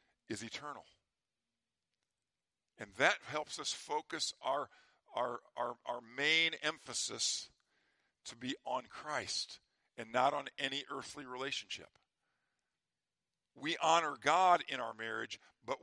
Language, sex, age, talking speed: English, male, 50-69, 115 wpm